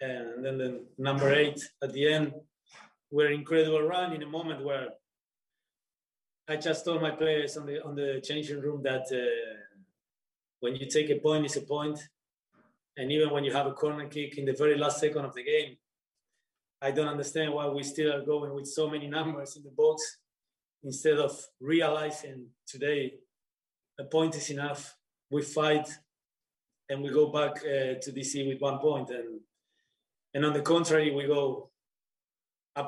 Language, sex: English, male